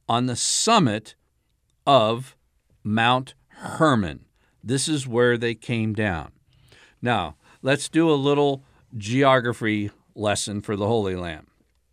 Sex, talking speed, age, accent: male, 115 wpm, 60-79, American